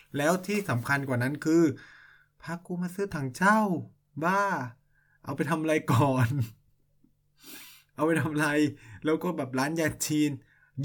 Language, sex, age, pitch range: Thai, male, 20-39, 115-150 Hz